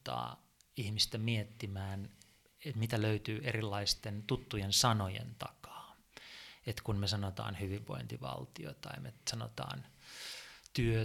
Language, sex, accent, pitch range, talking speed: Finnish, male, native, 105-125 Hz, 100 wpm